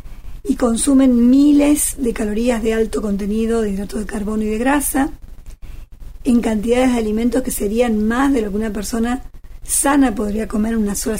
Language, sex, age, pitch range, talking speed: Persian, female, 40-59, 220-270 Hz, 175 wpm